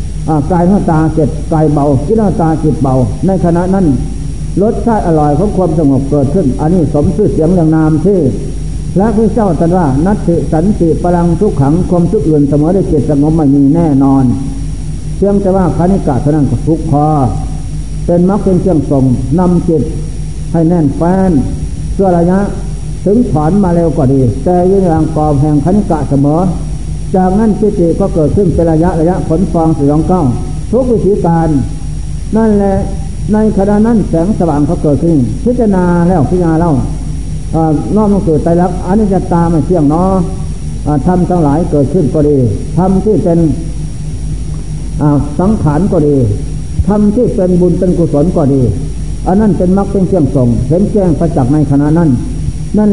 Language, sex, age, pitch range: Thai, male, 60-79, 145-185 Hz